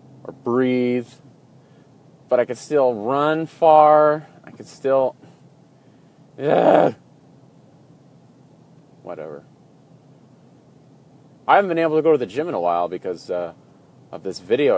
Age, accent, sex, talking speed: 30-49, American, male, 120 wpm